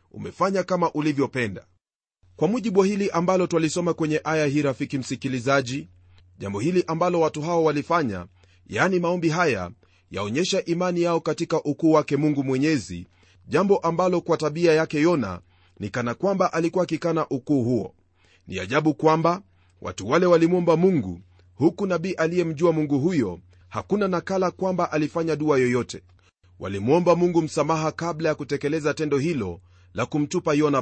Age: 40-59